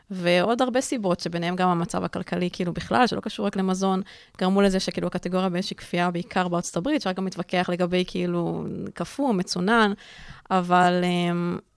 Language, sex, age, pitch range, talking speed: Hebrew, female, 20-39, 185-215 Hz, 155 wpm